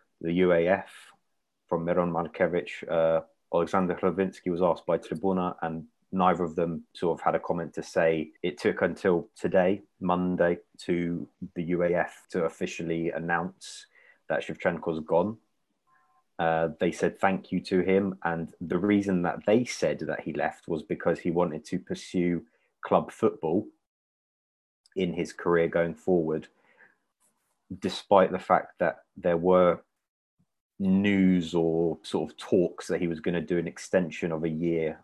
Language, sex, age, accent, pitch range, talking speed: English, male, 20-39, British, 85-95 Hz, 150 wpm